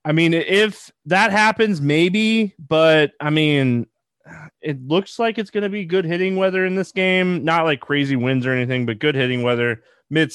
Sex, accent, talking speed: male, American, 190 wpm